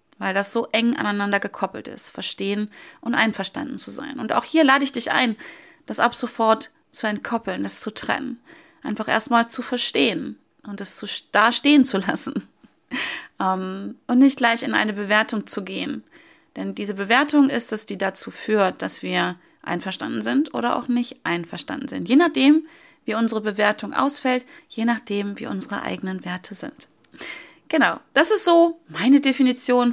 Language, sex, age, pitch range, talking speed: German, female, 30-49, 205-255 Hz, 160 wpm